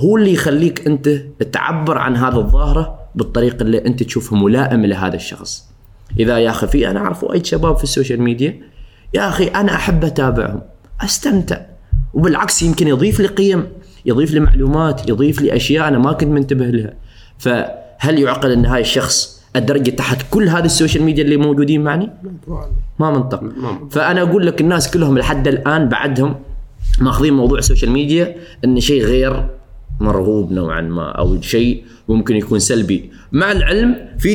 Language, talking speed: Arabic, 155 wpm